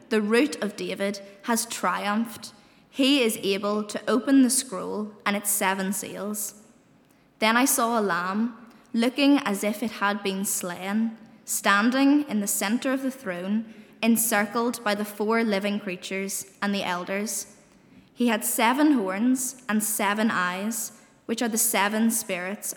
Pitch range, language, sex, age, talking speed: 200-235 Hz, English, female, 10-29, 150 wpm